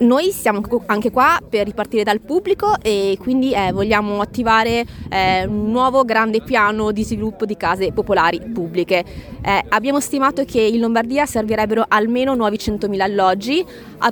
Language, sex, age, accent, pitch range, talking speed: Italian, female, 20-39, native, 205-255 Hz, 155 wpm